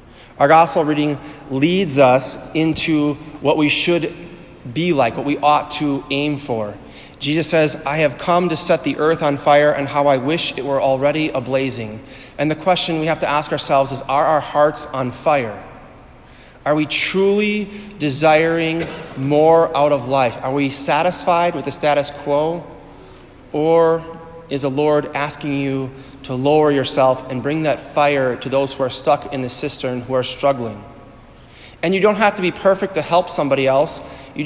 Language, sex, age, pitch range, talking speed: English, male, 30-49, 135-160 Hz, 175 wpm